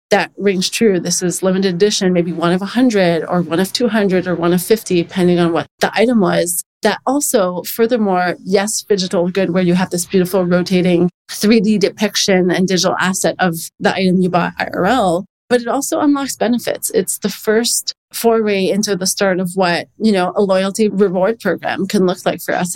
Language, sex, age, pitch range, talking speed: English, female, 30-49, 180-210 Hz, 190 wpm